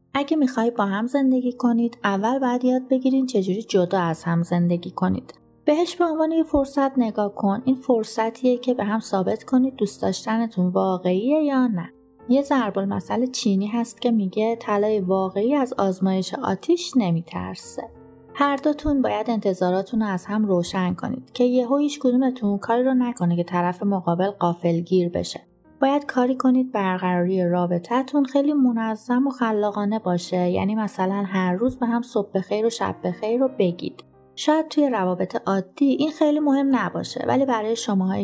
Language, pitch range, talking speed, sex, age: Persian, 190-255 Hz, 160 wpm, female, 30-49